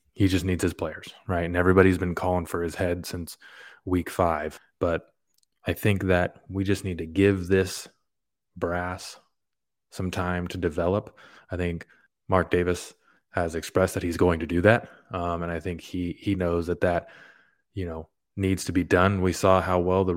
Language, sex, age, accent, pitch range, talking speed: English, male, 20-39, American, 85-95 Hz, 185 wpm